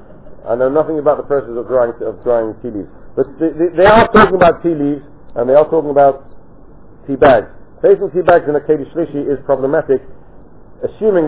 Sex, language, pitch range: male, English, 120-155 Hz